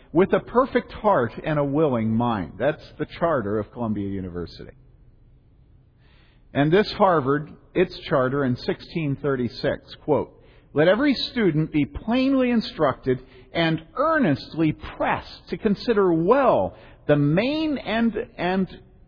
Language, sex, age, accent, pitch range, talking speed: English, male, 50-69, American, 115-160 Hz, 120 wpm